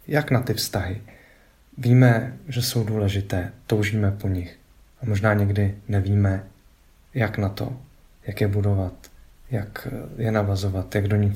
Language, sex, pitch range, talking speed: Czech, male, 95-115 Hz, 145 wpm